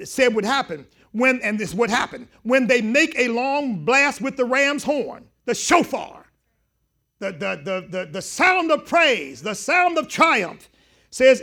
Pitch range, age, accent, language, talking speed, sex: 235-325 Hz, 50-69, American, English, 175 wpm, male